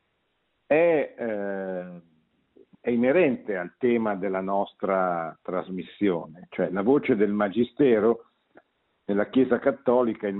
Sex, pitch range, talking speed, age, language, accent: male, 95-120 Hz, 100 wpm, 50-69, Italian, native